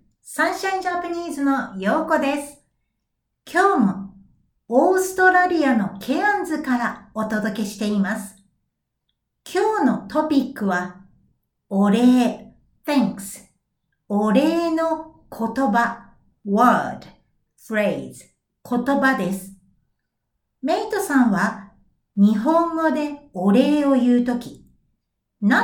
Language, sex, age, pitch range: Japanese, female, 60-79, 200-310 Hz